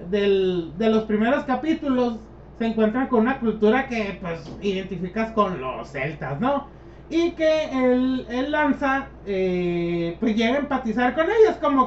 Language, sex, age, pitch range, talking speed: Spanish, male, 30-49, 205-270 Hz, 145 wpm